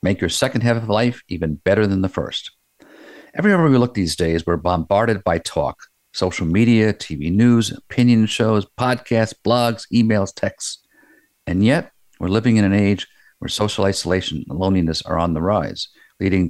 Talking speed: 170 wpm